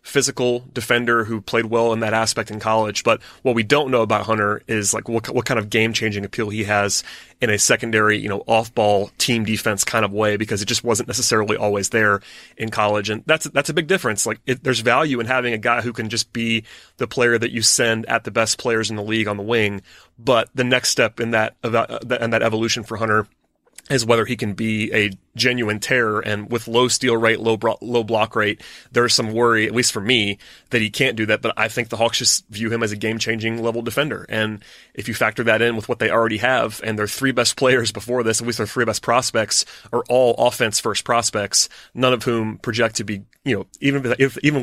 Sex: male